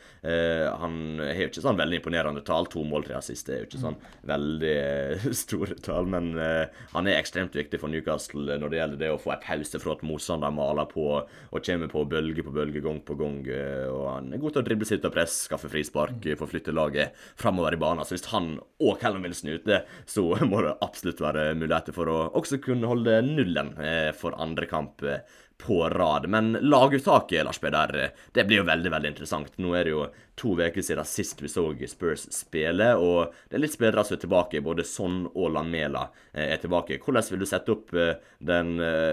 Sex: male